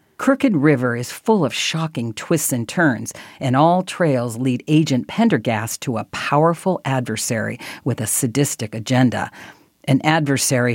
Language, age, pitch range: English, 50-69, 120-160 Hz